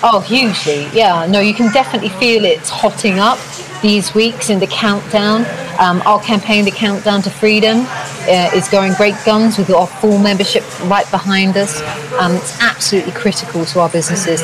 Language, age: English, 40-59